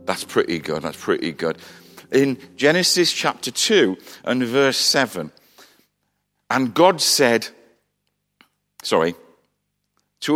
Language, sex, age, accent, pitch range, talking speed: English, male, 50-69, British, 110-165 Hz, 105 wpm